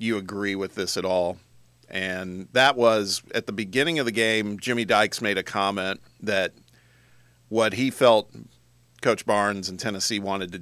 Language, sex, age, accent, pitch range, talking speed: English, male, 40-59, American, 90-115 Hz, 170 wpm